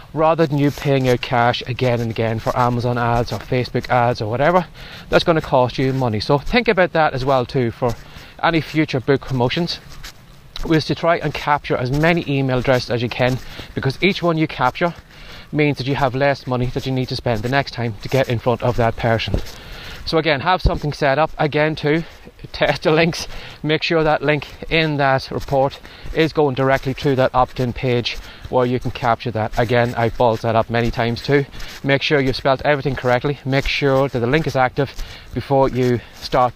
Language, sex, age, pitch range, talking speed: English, male, 20-39, 120-145 Hz, 205 wpm